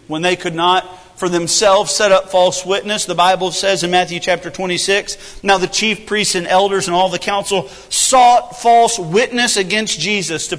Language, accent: English, American